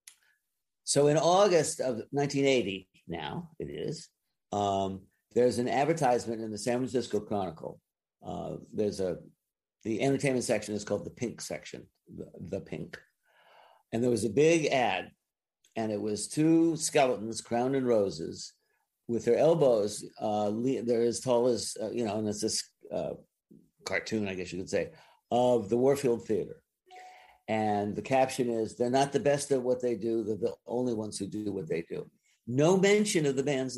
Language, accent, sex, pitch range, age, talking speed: English, American, male, 110-145 Hz, 50-69, 170 wpm